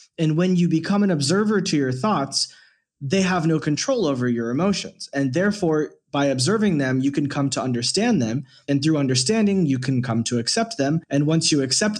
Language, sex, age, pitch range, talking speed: English, male, 20-39, 130-180 Hz, 200 wpm